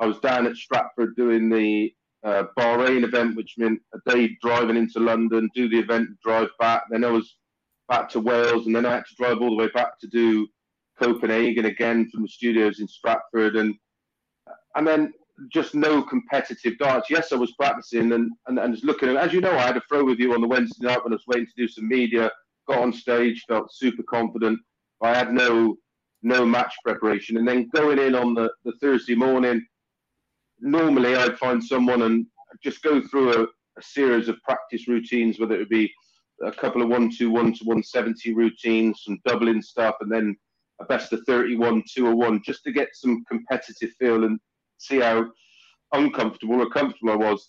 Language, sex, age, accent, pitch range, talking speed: English, male, 40-59, British, 115-125 Hz, 195 wpm